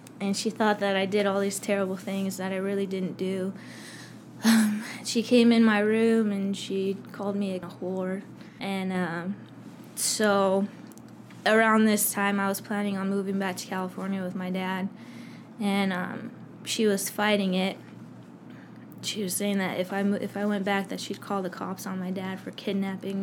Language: English